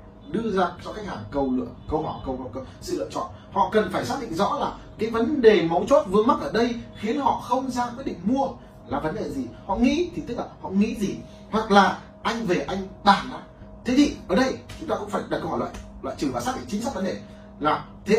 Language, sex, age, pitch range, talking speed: Vietnamese, male, 30-49, 175-235 Hz, 255 wpm